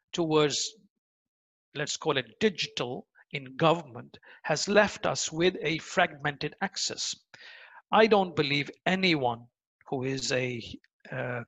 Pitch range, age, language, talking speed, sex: 140-185 Hz, 50-69, Arabic, 115 wpm, male